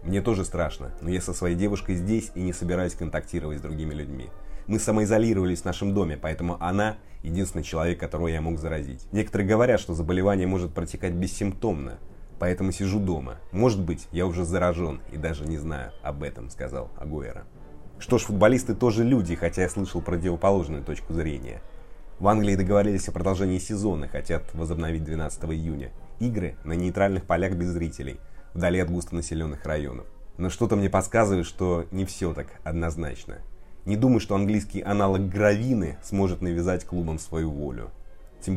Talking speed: 160 wpm